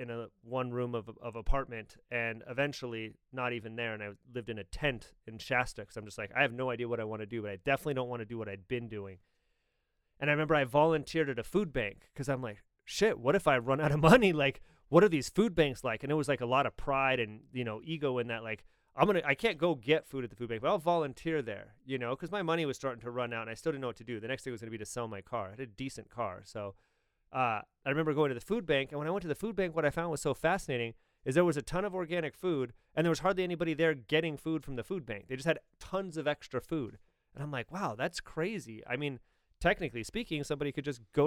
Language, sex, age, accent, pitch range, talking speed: English, male, 30-49, American, 115-155 Hz, 290 wpm